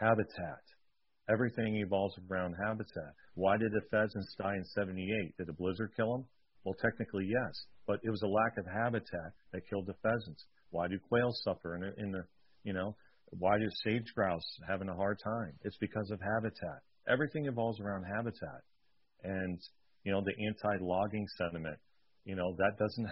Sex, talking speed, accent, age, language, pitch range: male, 170 wpm, American, 40-59, English, 95-115 Hz